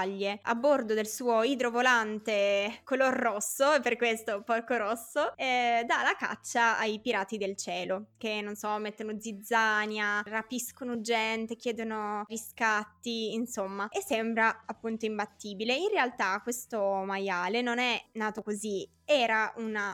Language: Italian